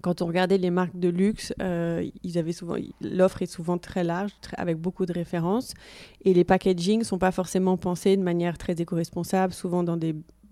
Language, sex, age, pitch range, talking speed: French, female, 20-39, 175-200 Hz, 200 wpm